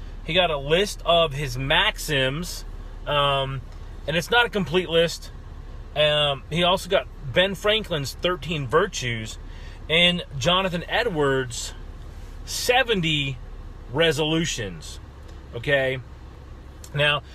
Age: 30-49